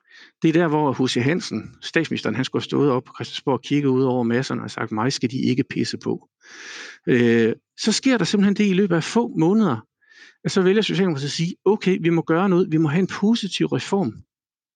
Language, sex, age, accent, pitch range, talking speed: Danish, male, 60-79, native, 140-195 Hz, 220 wpm